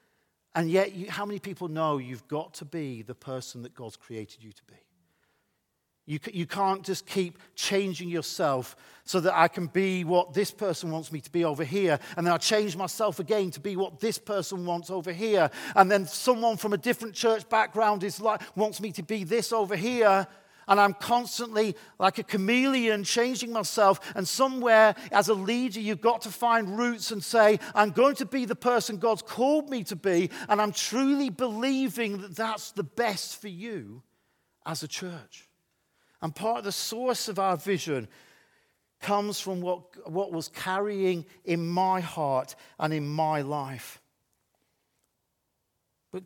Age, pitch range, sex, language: 50-69, 165-220 Hz, male, English